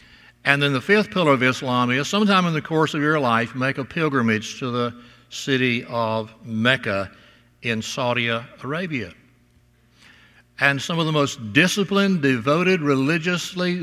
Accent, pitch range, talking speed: American, 120-155 Hz, 150 wpm